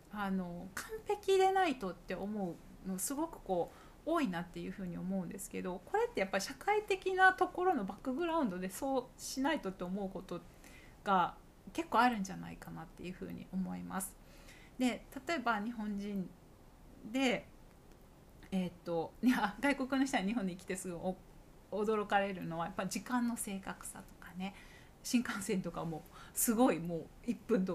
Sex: female